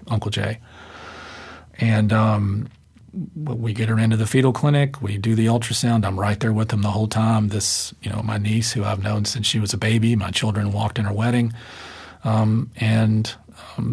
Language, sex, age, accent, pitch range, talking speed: English, male, 40-59, American, 110-120 Hz, 195 wpm